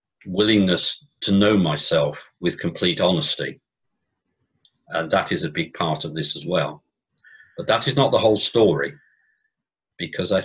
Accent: British